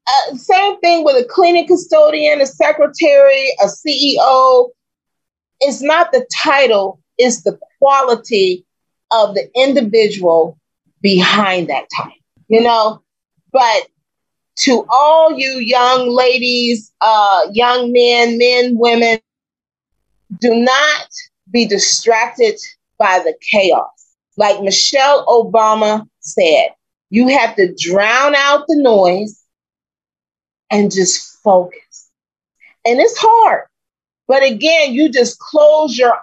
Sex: female